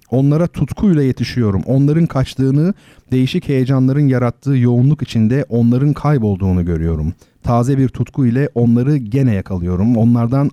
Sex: male